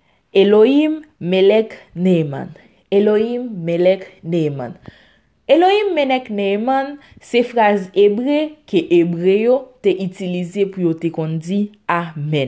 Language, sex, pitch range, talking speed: French, female, 175-240 Hz, 90 wpm